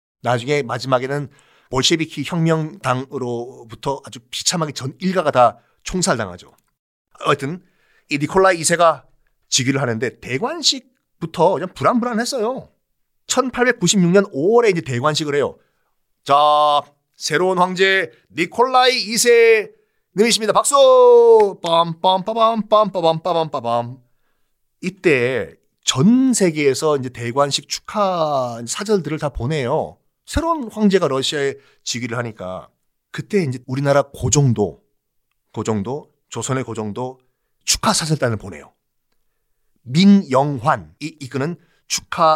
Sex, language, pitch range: male, Korean, 120-190 Hz